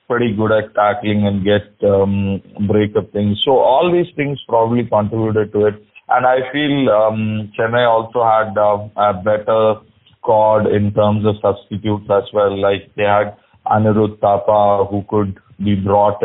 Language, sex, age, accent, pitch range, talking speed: English, male, 30-49, Indian, 105-115 Hz, 165 wpm